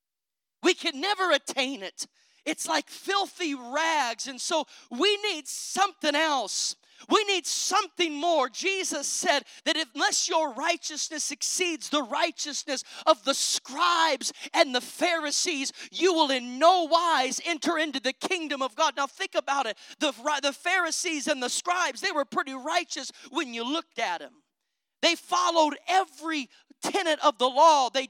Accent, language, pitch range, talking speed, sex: American, English, 280-345 Hz, 150 wpm, male